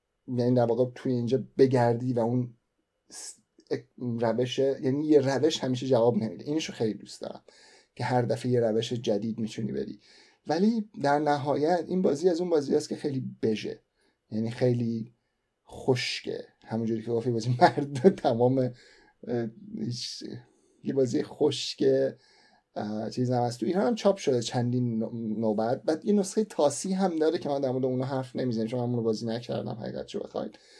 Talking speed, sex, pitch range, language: 155 wpm, male, 115-140 Hz, Persian